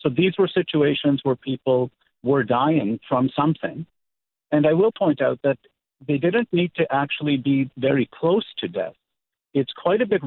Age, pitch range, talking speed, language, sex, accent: 50-69, 125-150 Hz, 175 wpm, English, male, American